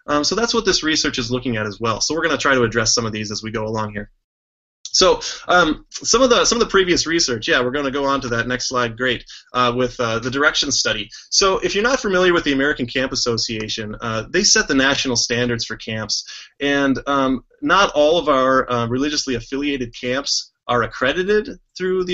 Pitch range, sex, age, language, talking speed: 120-160 Hz, male, 20-39, English, 225 wpm